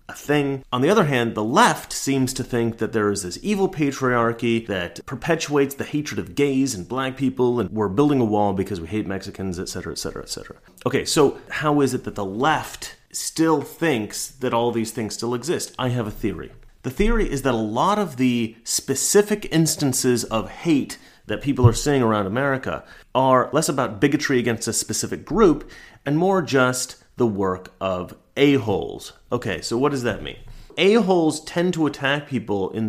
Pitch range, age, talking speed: 110-150 Hz, 30-49, 190 wpm